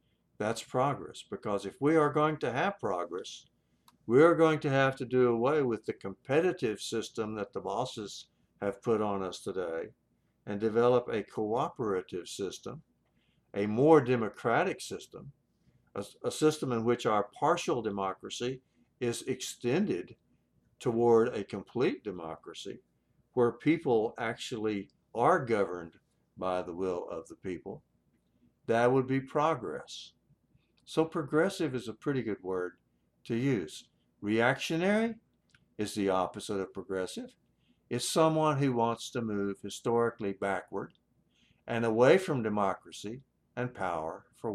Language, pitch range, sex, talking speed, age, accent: English, 100-130 Hz, male, 130 wpm, 60-79, American